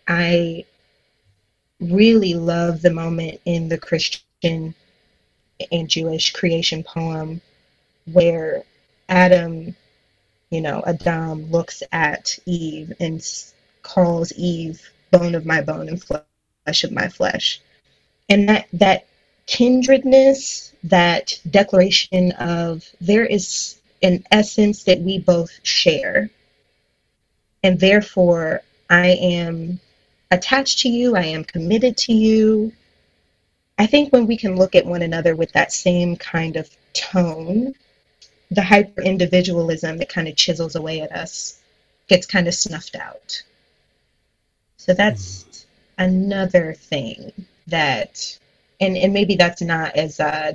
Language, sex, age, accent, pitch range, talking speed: English, female, 20-39, American, 165-190 Hz, 120 wpm